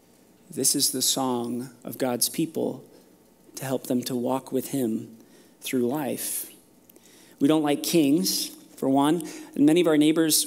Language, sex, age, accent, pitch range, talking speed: English, male, 30-49, American, 130-165 Hz, 155 wpm